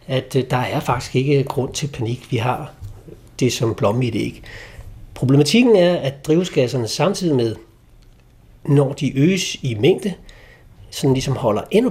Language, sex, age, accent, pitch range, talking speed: Danish, male, 60-79, native, 120-155 Hz, 155 wpm